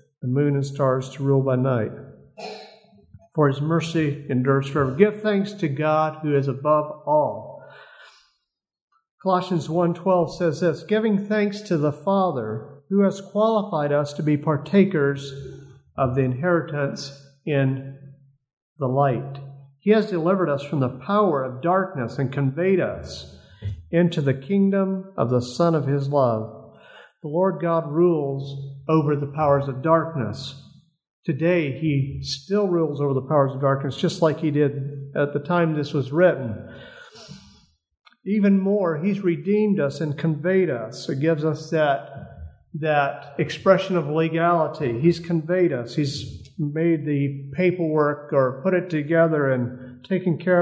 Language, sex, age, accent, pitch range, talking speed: English, male, 50-69, American, 140-175 Hz, 145 wpm